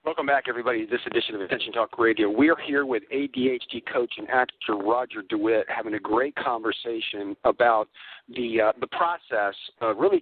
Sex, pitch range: male, 120-160 Hz